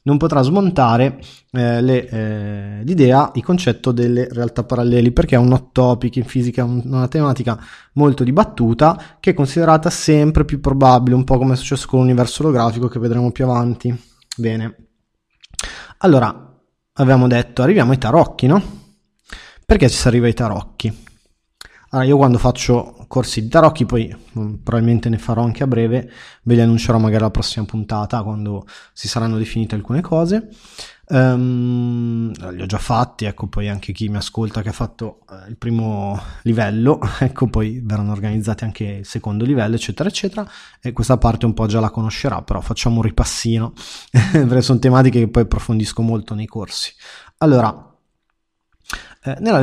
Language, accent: Italian, native